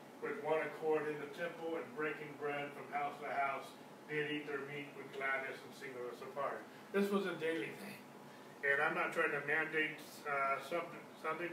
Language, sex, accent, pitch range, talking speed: English, male, American, 145-170 Hz, 195 wpm